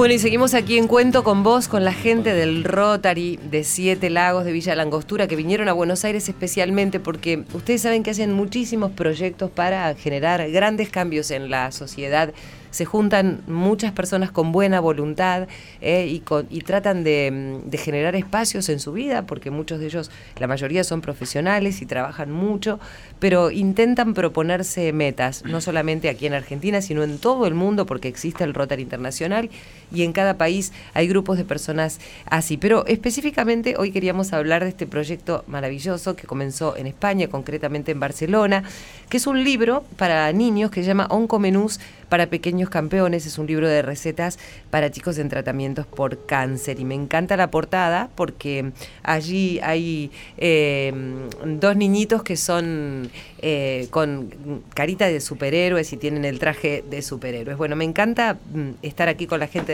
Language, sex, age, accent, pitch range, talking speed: Spanish, female, 30-49, Argentinian, 150-200 Hz, 170 wpm